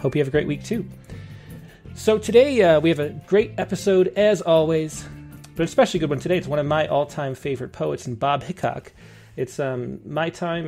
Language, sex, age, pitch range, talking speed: English, male, 30-49, 135-180 Hz, 210 wpm